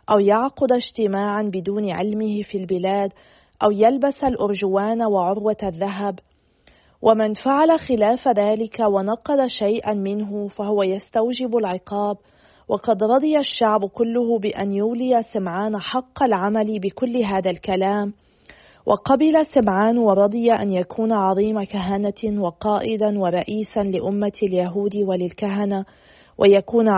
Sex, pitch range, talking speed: female, 200-230 Hz, 105 wpm